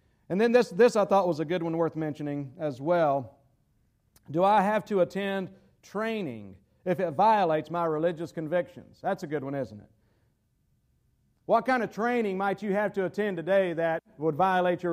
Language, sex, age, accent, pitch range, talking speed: English, male, 50-69, American, 140-205 Hz, 185 wpm